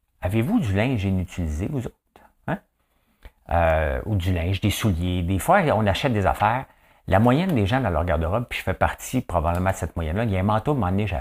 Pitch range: 85-115 Hz